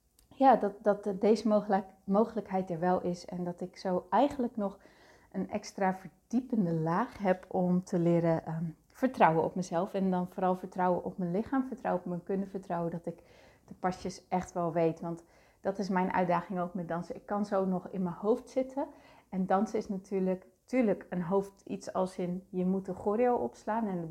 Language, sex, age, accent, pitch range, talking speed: Dutch, female, 30-49, Dutch, 180-215 Hz, 190 wpm